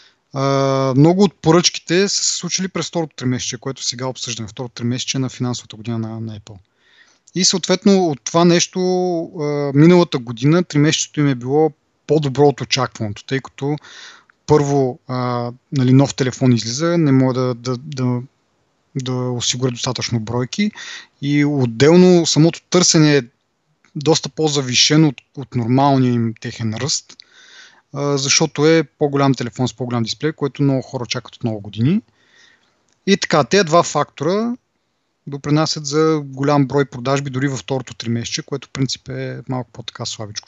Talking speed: 150 wpm